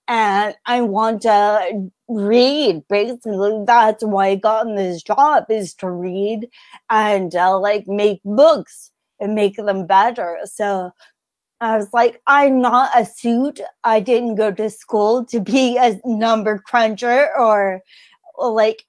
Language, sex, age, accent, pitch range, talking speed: English, female, 30-49, American, 200-240 Hz, 145 wpm